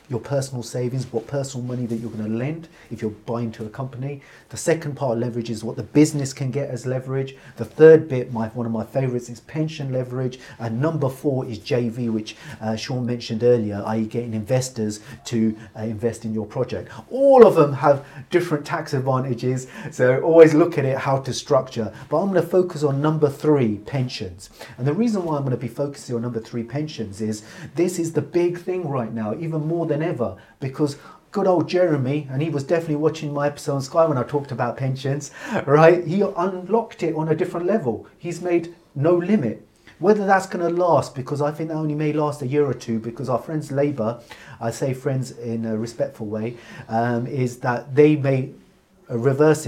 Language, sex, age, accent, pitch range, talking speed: English, male, 40-59, British, 115-155 Hz, 200 wpm